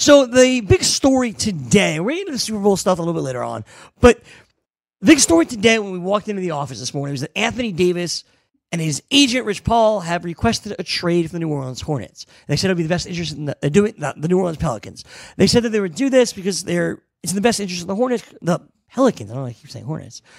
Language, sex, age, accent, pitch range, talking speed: English, male, 40-59, American, 140-220 Hz, 265 wpm